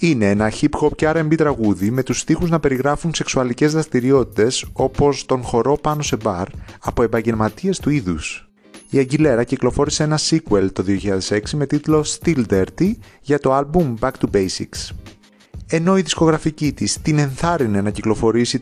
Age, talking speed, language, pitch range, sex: 30-49, 155 wpm, Greek, 110-145 Hz, male